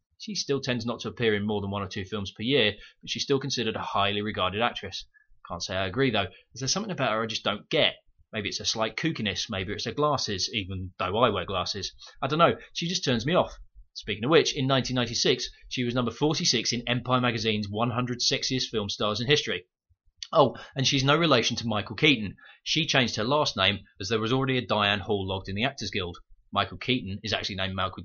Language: English